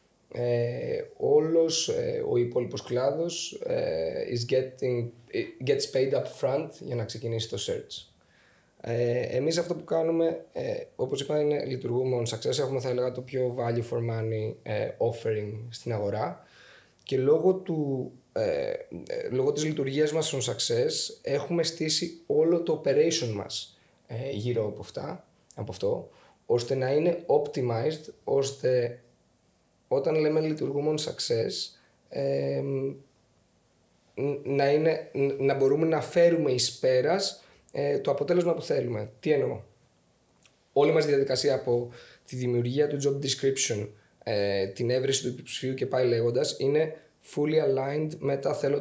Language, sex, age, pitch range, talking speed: Greek, male, 20-39, 125-165 Hz, 140 wpm